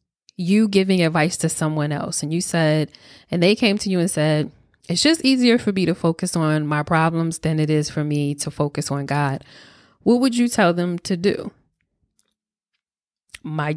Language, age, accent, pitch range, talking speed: English, 20-39, American, 155-190 Hz, 185 wpm